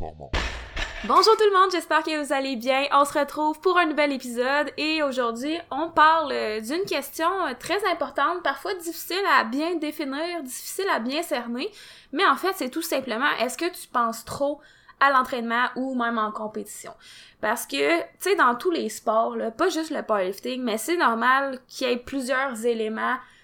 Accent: Canadian